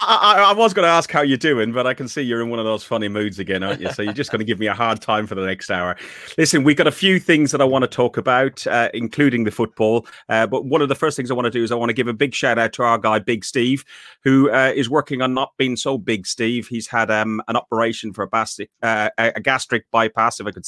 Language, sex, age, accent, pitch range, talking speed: English, male, 30-49, British, 105-135 Hz, 290 wpm